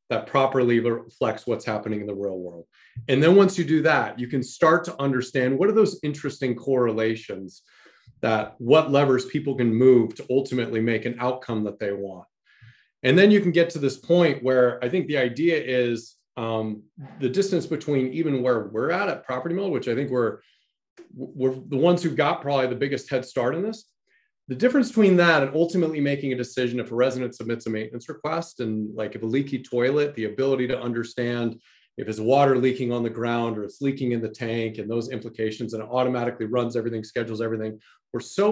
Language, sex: English, male